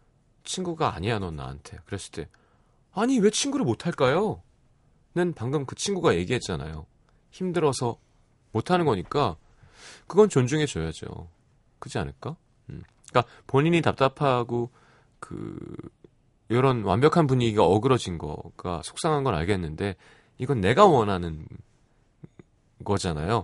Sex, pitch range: male, 100-145 Hz